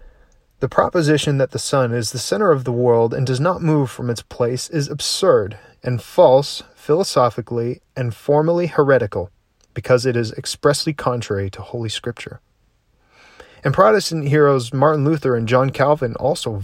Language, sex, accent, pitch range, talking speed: English, male, American, 115-140 Hz, 155 wpm